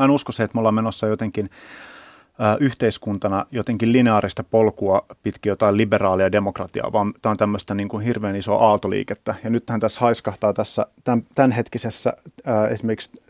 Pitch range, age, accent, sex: 105-125 Hz, 30-49, native, male